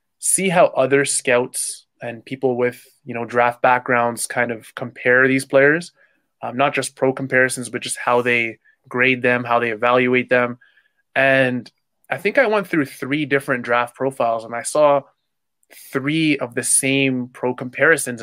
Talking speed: 165 wpm